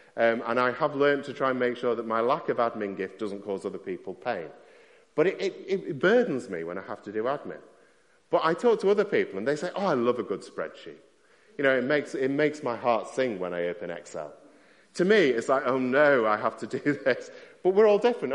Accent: British